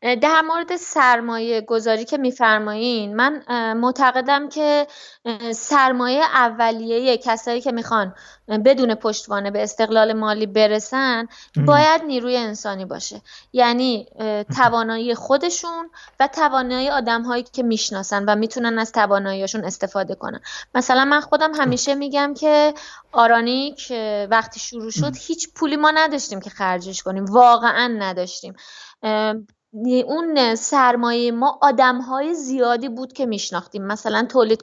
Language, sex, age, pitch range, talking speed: Persian, female, 20-39, 215-260 Hz, 120 wpm